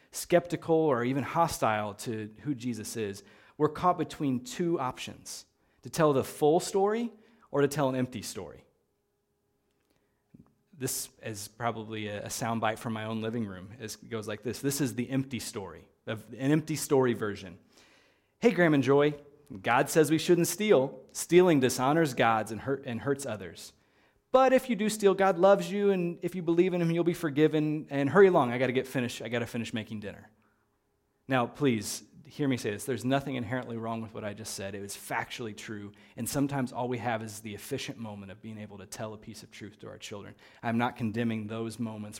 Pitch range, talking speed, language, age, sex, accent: 110-145 Hz, 200 wpm, English, 30-49, male, American